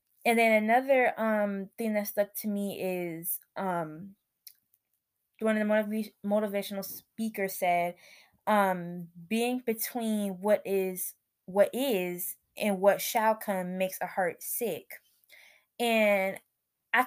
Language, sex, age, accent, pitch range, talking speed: English, female, 20-39, American, 195-245 Hz, 125 wpm